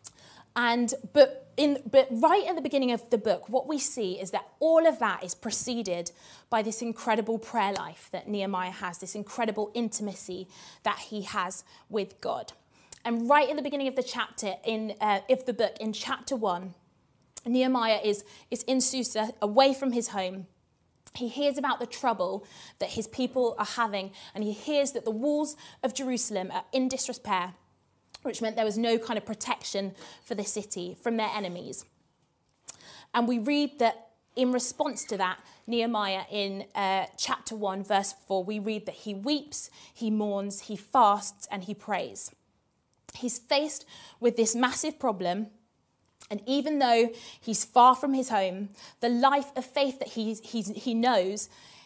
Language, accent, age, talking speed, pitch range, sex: English, British, 20-39, 170 wpm, 205-255 Hz, female